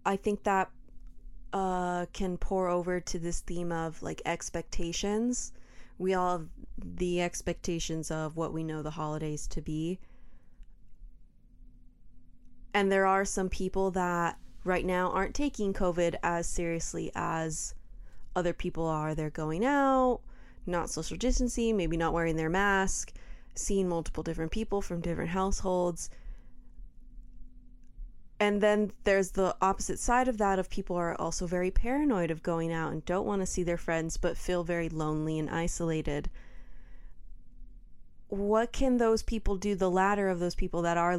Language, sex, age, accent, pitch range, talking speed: English, female, 20-39, American, 165-205 Hz, 150 wpm